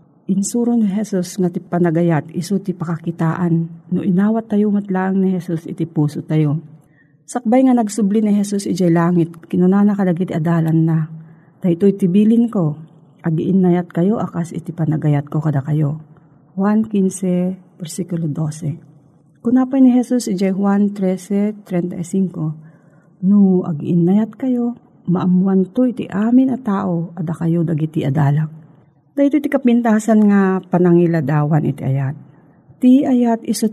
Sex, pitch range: female, 165-210 Hz